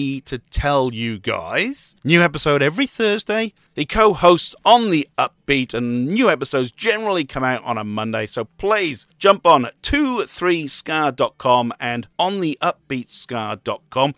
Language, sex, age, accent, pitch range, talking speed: English, male, 40-59, British, 115-155 Hz, 135 wpm